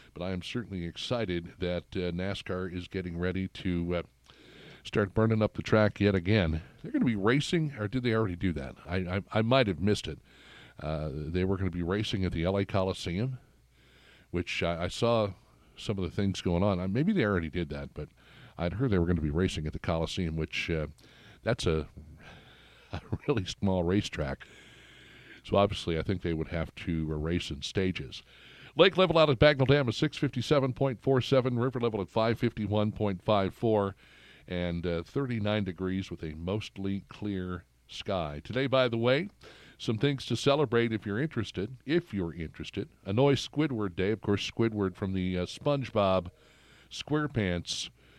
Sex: male